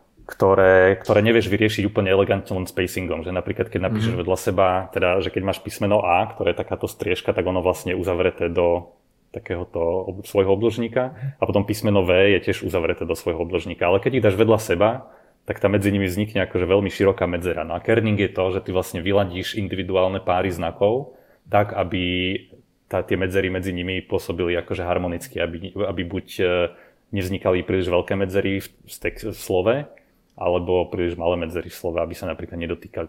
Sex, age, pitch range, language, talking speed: male, 30-49, 90-100 Hz, Slovak, 180 wpm